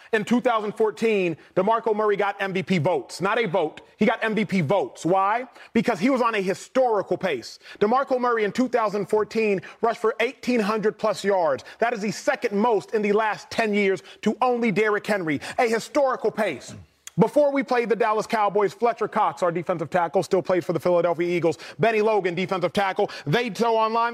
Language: English